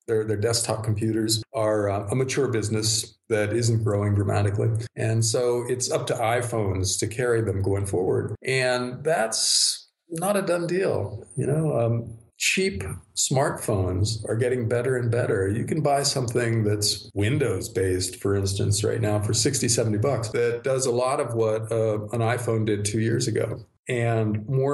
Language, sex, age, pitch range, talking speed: English, male, 50-69, 110-130 Hz, 165 wpm